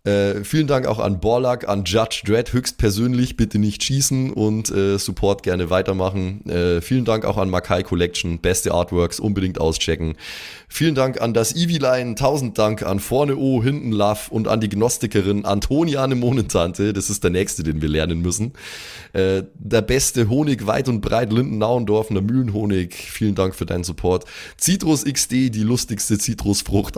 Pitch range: 95-125 Hz